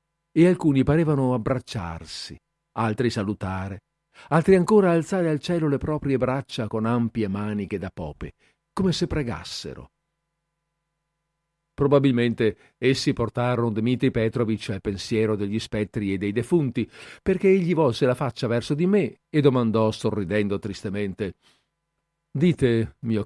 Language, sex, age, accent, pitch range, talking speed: Italian, male, 50-69, native, 115-170 Hz, 125 wpm